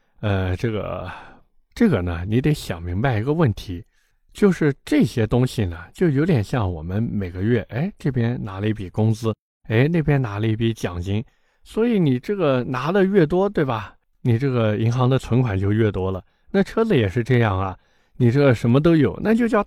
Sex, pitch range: male, 100-140 Hz